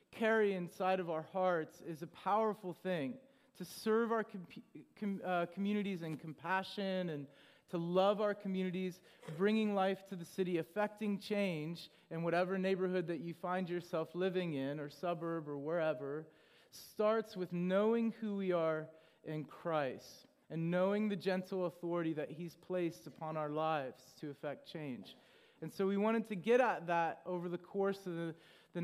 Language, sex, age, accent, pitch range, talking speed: English, male, 30-49, American, 165-195 Hz, 160 wpm